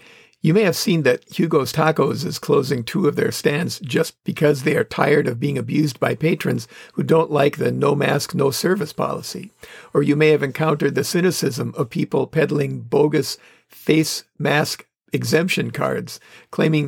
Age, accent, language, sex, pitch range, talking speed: 50-69, American, English, male, 135-160 Hz, 165 wpm